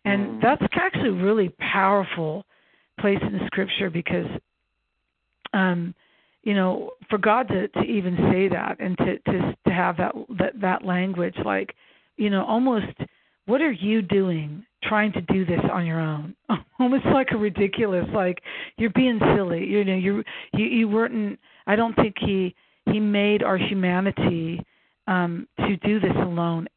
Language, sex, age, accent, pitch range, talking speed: English, female, 50-69, American, 180-210 Hz, 165 wpm